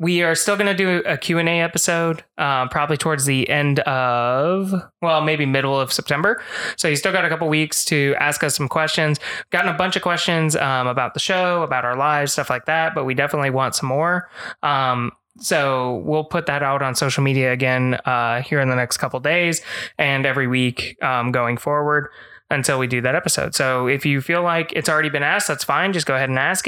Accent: American